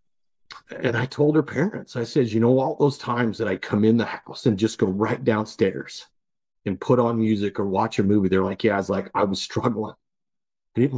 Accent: American